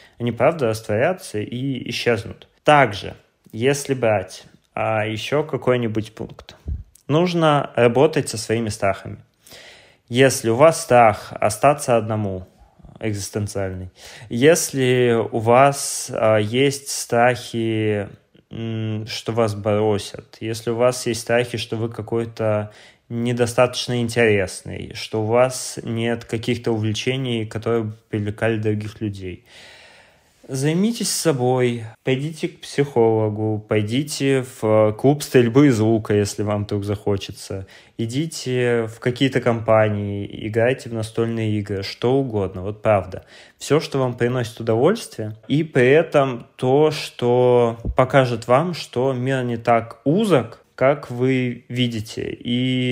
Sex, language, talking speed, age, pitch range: male, Russian, 110 wpm, 20-39, 110-130 Hz